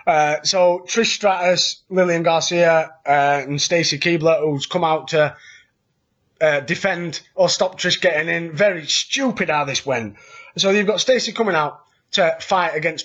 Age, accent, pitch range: 20-39, British, 160-205 Hz